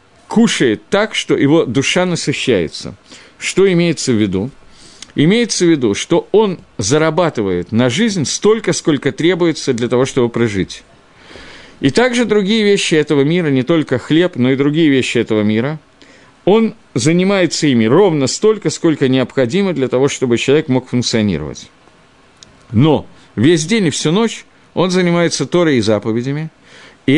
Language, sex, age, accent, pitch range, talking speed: Russian, male, 50-69, native, 125-180 Hz, 145 wpm